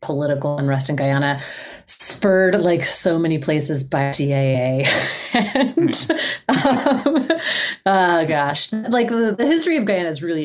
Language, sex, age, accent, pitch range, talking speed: English, female, 30-49, American, 135-180 Hz, 130 wpm